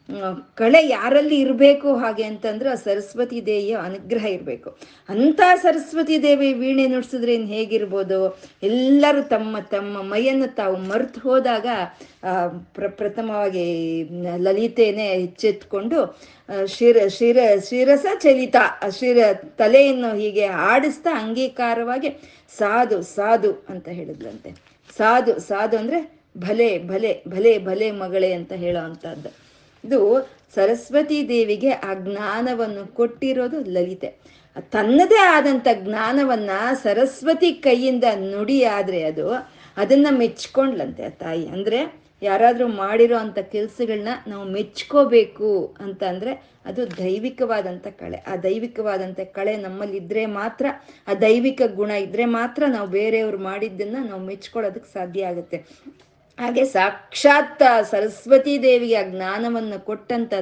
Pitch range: 200-265 Hz